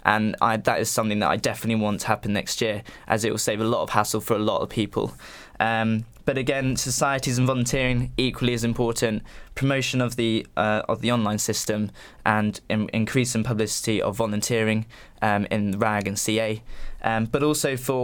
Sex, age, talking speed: male, 20-39, 195 wpm